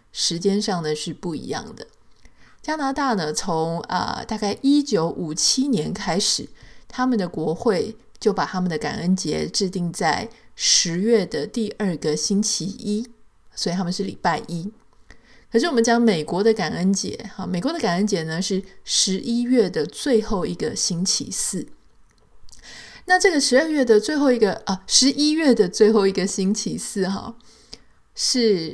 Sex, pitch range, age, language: female, 175-225 Hz, 20-39, Chinese